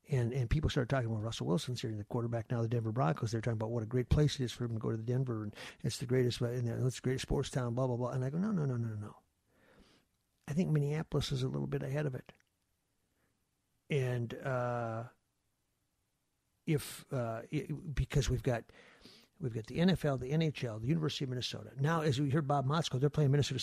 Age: 60-79